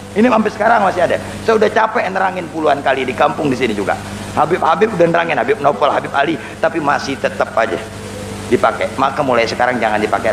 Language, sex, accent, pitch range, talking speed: Indonesian, male, native, 165-270 Hz, 200 wpm